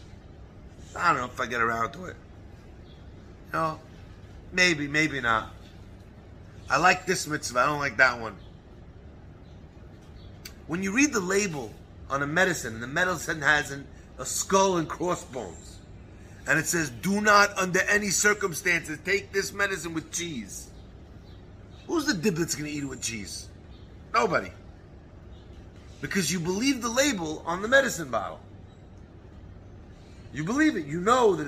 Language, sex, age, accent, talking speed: English, male, 30-49, American, 145 wpm